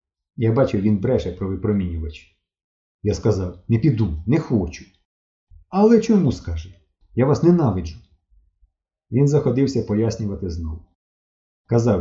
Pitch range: 90-135 Hz